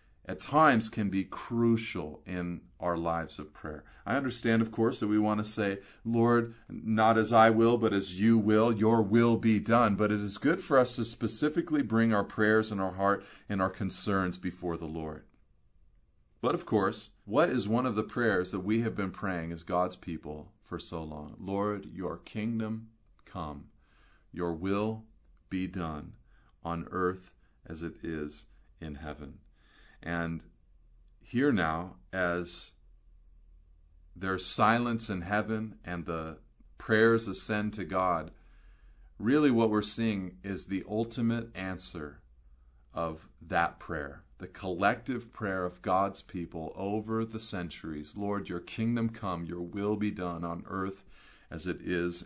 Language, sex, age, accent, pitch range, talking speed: English, male, 40-59, American, 85-110 Hz, 155 wpm